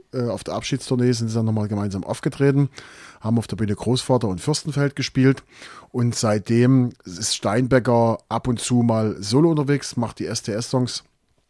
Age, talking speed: 30-49, 155 wpm